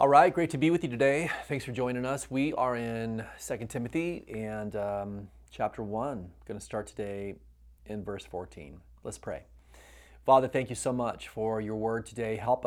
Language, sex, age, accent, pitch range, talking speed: English, male, 30-49, American, 90-125 Hz, 190 wpm